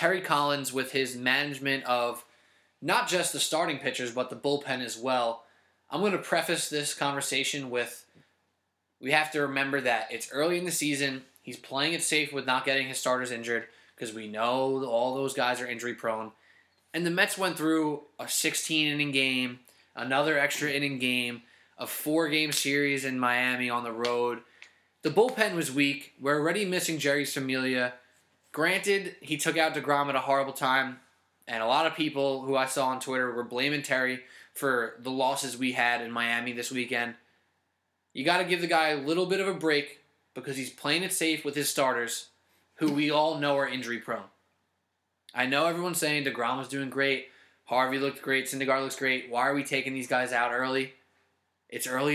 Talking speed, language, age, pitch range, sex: 190 wpm, English, 20-39, 125-150 Hz, male